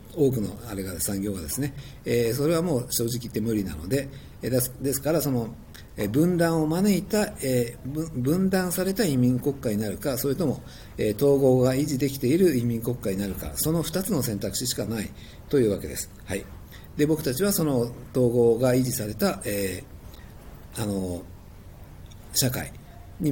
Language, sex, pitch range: Japanese, male, 105-140 Hz